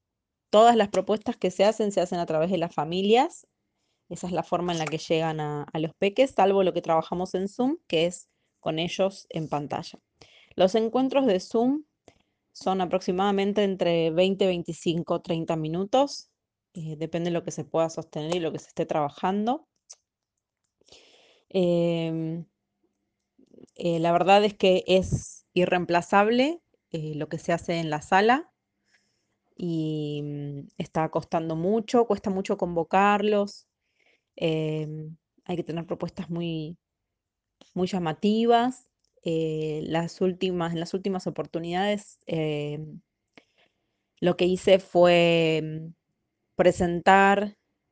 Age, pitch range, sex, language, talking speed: 20-39, 160-195 Hz, female, Spanish, 130 wpm